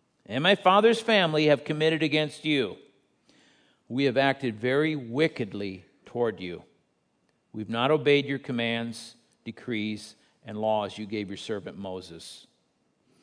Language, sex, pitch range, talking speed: English, male, 135-190 Hz, 125 wpm